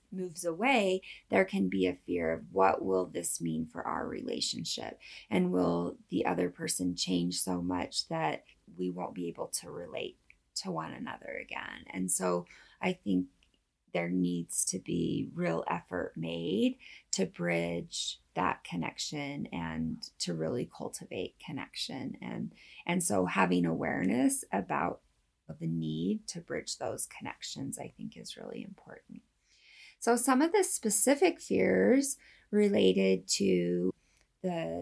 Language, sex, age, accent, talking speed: English, female, 20-39, American, 140 wpm